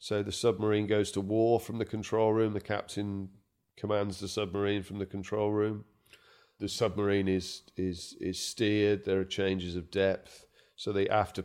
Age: 40-59